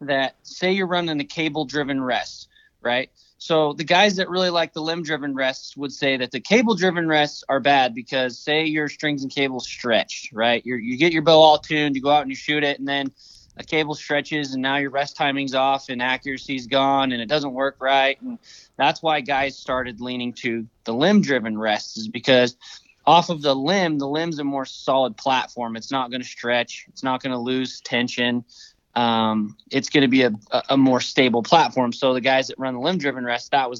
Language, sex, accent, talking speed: English, male, American, 215 wpm